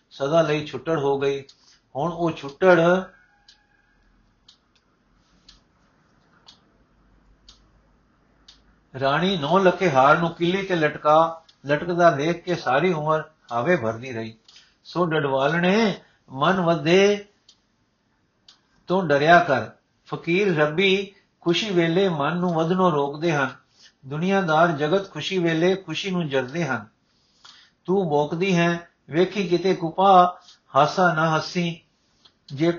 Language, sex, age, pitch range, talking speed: Punjabi, male, 60-79, 150-180 Hz, 100 wpm